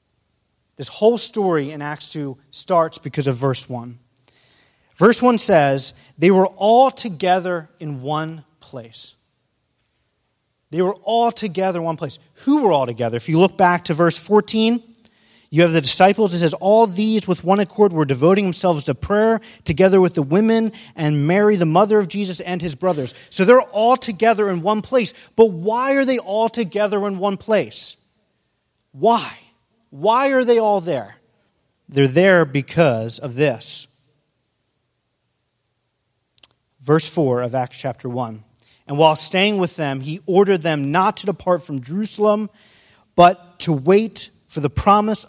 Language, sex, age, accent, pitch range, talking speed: English, male, 30-49, American, 140-200 Hz, 160 wpm